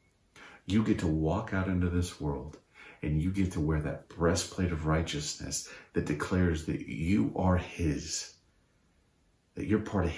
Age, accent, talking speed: 40-59, American, 160 wpm